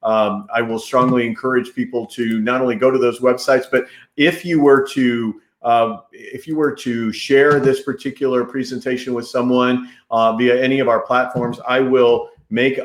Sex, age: male, 40-59